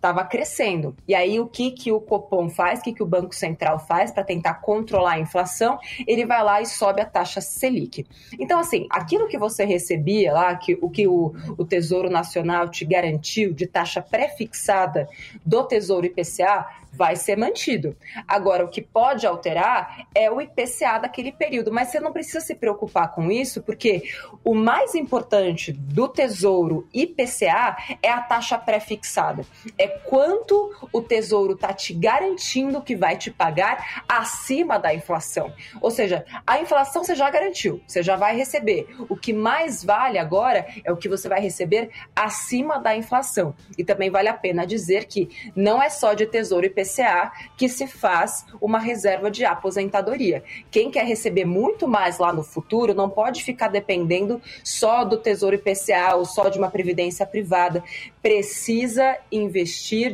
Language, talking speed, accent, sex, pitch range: Portuguese, 165 wpm, Brazilian, female, 185-240 Hz